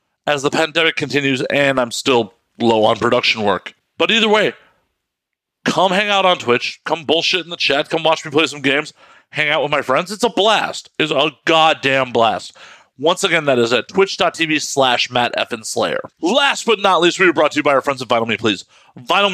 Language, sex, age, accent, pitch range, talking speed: English, male, 40-59, American, 140-190 Hz, 210 wpm